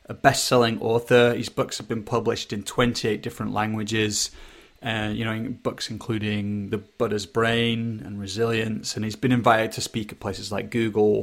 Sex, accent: male, British